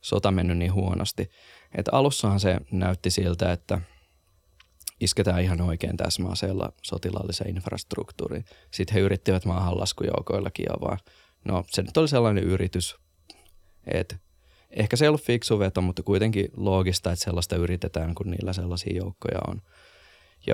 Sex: male